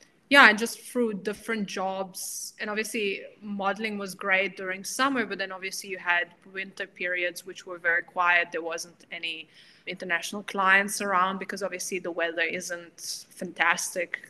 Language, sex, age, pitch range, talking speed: English, female, 20-39, 180-200 Hz, 150 wpm